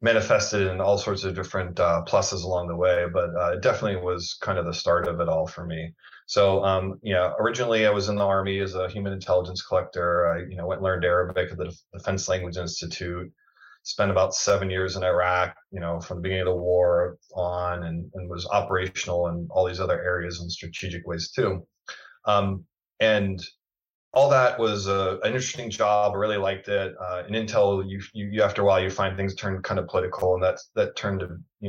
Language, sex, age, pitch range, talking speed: English, male, 30-49, 90-100 Hz, 215 wpm